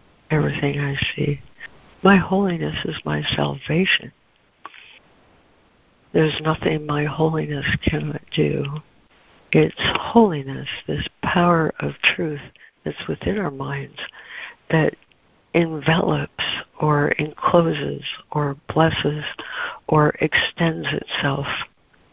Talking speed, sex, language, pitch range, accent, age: 90 wpm, female, English, 145-165 Hz, American, 60-79